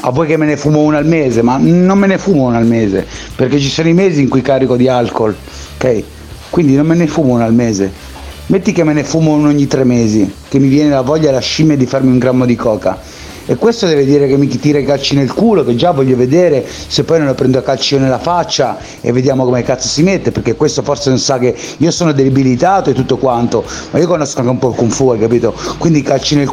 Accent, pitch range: native, 125-155 Hz